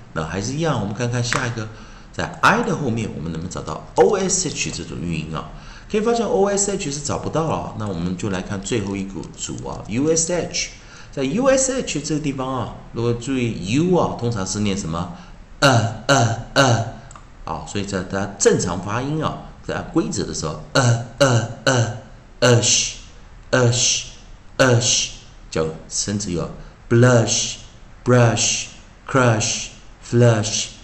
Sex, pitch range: male, 100-135 Hz